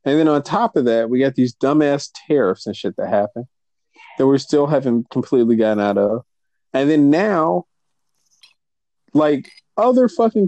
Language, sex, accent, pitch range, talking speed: English, male, American, 130-180 Hz, 165 wpm